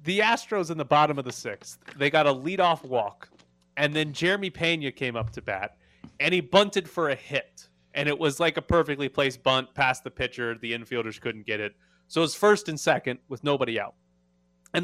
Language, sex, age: English, male, 30-49